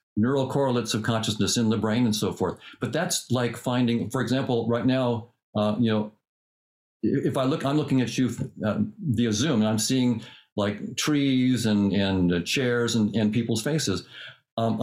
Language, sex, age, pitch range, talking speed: English, male, 50-69, 110-140 Hz, 180 wpm